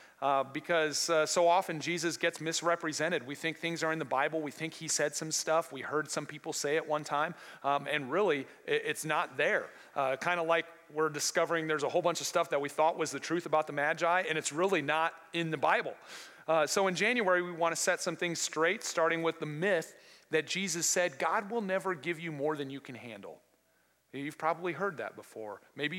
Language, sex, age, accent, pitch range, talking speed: English, male, 40-59, American, 130-165 Hz, 220 wpm